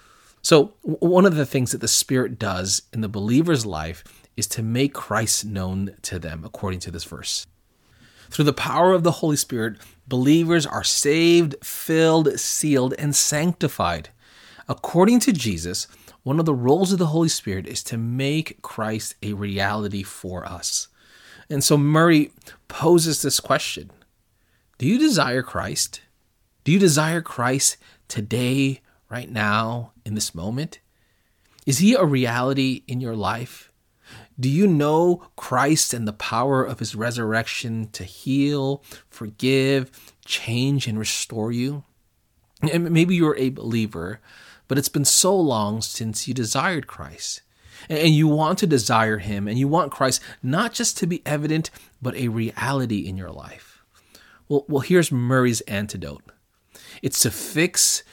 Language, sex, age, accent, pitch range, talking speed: English, male, 30-49, American, 105-150 Hz, 150 wpm